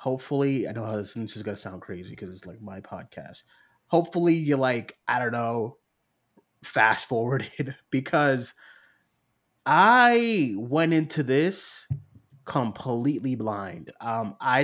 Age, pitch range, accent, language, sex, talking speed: 20-39, 115-145 Hz, American, English, male, 130 wpm